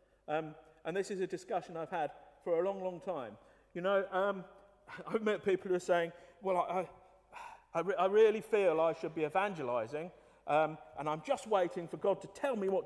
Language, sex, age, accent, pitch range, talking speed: English, male, 50-69, British, 155-200 Hz, 190 wpm